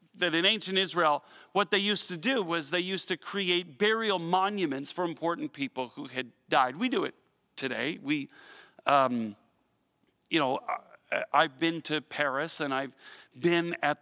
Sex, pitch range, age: male, 145-205 Hz, 40-59